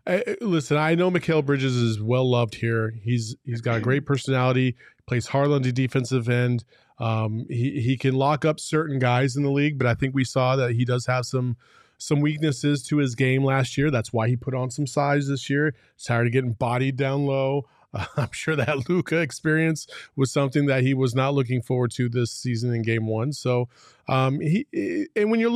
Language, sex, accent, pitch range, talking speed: English, male, American, 125-150 Hz, 220 wpm